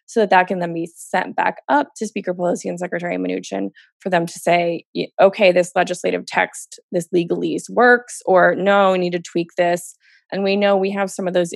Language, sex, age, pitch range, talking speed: English, female, 20-39, 175-205 Hz, 215 wpm